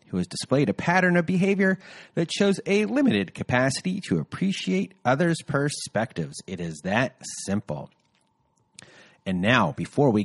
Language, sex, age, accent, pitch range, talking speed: English, male, 30-49, American, 125-190 Hz, 135 wpm